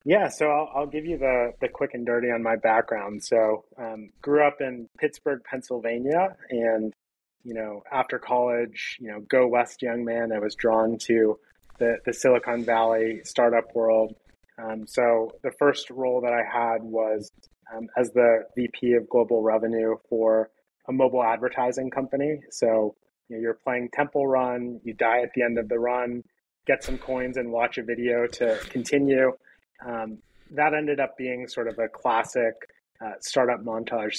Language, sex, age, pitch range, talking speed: English, male, 30-49, 110-125 Hz, 175 wpm